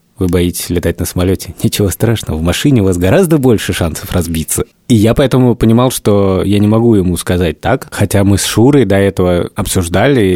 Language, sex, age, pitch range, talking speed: Russian, male, 30-49, 85-110 Hz, 190 wpm